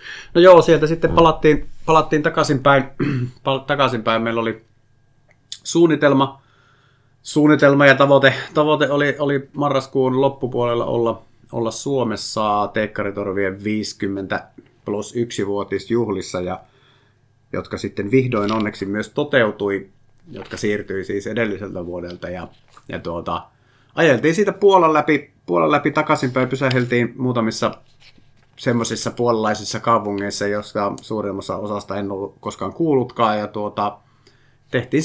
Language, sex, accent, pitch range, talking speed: Finnish, male, native, 110-135 Hz, 110 wpm